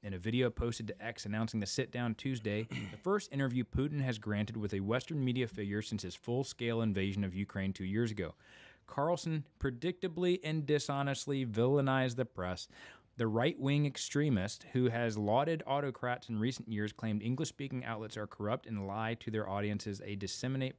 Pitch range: 105-135 Hz